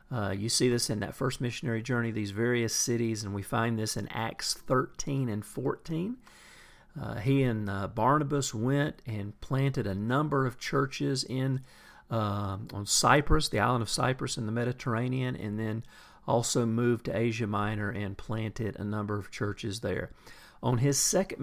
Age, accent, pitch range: 40-59, American, 105-130 Hz